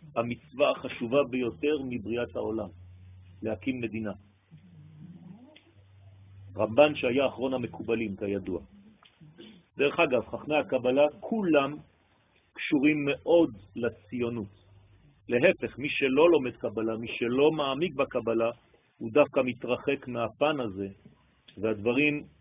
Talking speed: 95 wpm